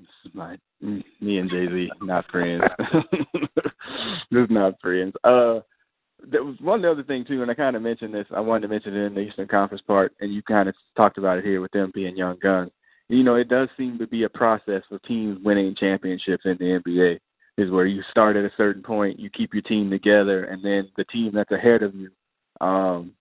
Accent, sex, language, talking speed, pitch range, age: American, male, English, 215 wpm, 95-110 Hz, 20-39